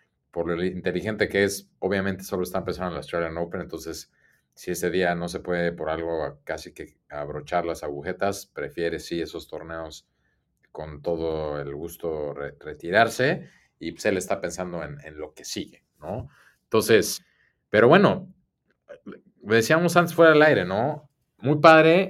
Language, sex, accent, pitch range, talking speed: Spanish, male, Mexican, 85-120 Hz, 165 wpm